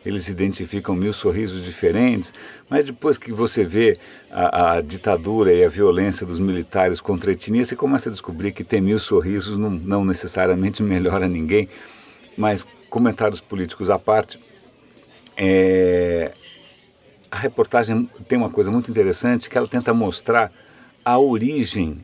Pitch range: 95-130 Hz